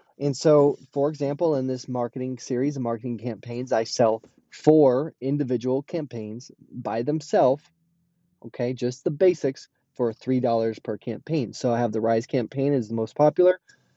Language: English